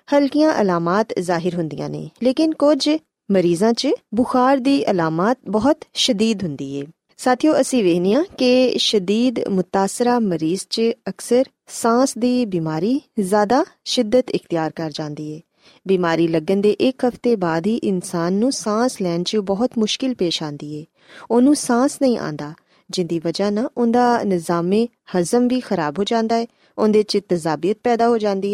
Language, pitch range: Punjabi, 180-250 Hz